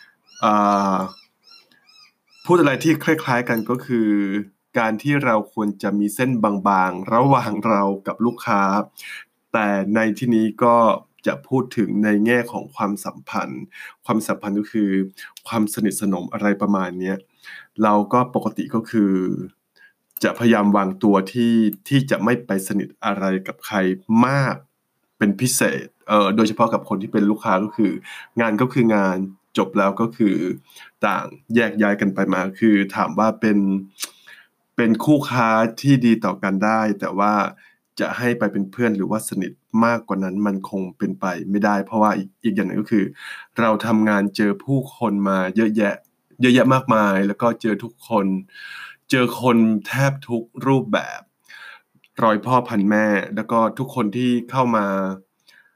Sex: male